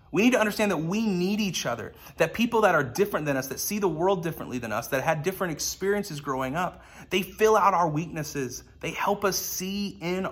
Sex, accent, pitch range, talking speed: male, American, 125-180 Hz, 225 wpm